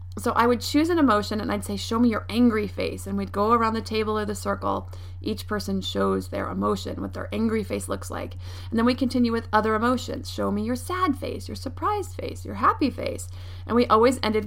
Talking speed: 230 wpm